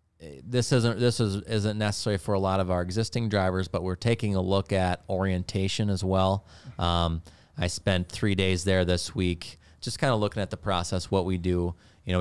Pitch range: 85-95 Hz